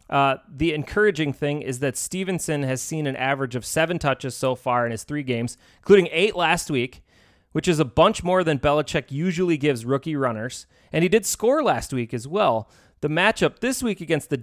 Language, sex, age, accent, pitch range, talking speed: English, male, 30-49, American, 125-160 Hz, 205 wpm